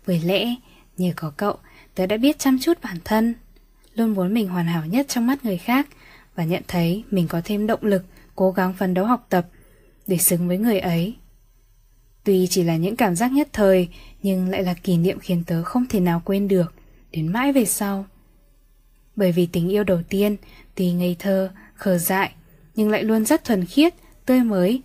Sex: female